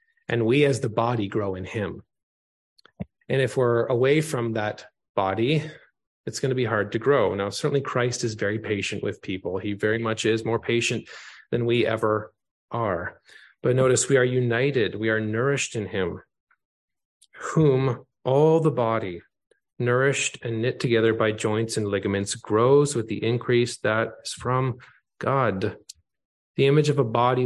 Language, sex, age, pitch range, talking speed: English, male, 30-49, 110-130 Hz, 165 wpm